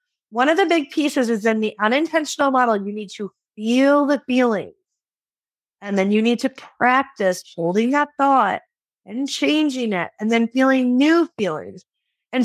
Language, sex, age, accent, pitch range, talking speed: English, female, 30-49, American, 210-275 Hz, 165 wpm